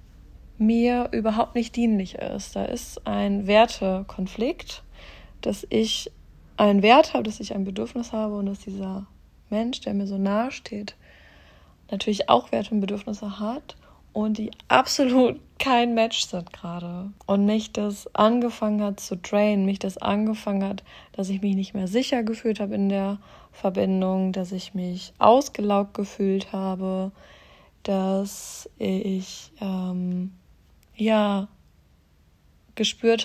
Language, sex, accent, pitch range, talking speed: German, female, German, 185-220 Hz, 135 wpm